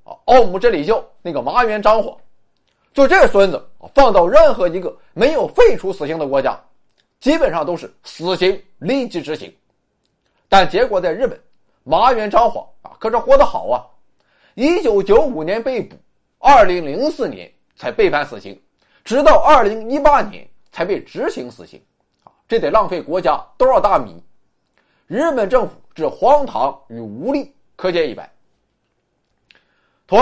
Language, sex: Chinese, male